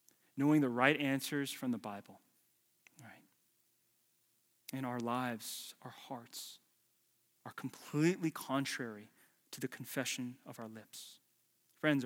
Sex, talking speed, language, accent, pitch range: male, 115 wpm, English, American, 135-205 Hz